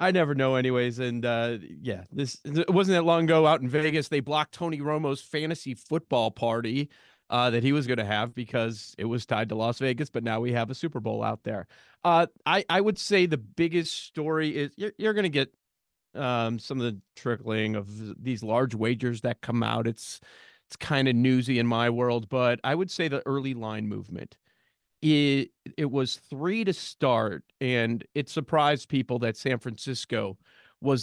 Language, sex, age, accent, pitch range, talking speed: English, male, 30-49, American, 120-145 Hz, 195 wpm